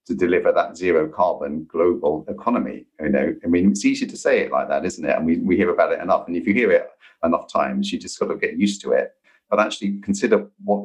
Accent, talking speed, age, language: British, 255 wpm, 40-59, English